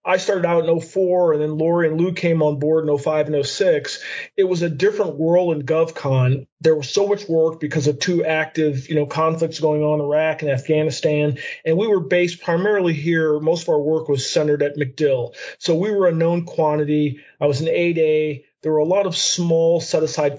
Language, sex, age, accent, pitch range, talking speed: English, male, 40-59, American, 150-180 Hz, 215 wpm